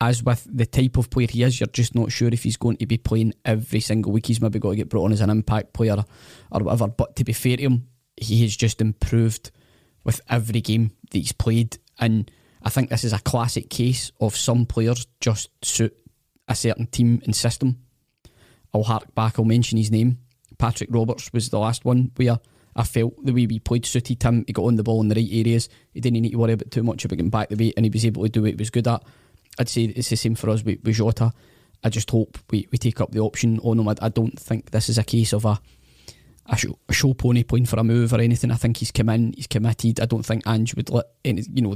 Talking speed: 260 wpm